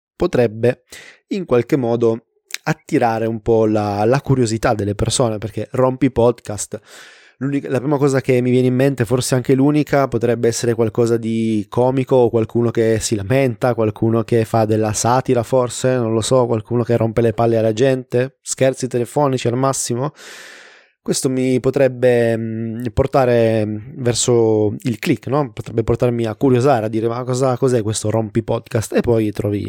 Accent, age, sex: native, 20-39, male